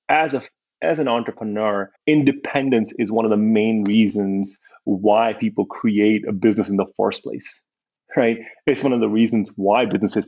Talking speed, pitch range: 170 wpm, 105-120 Hz